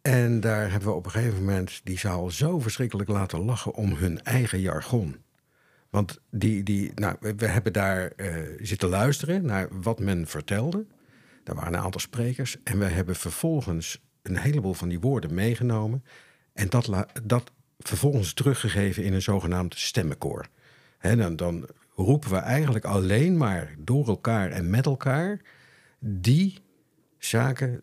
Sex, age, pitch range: male, 50-69, 95-130 Hz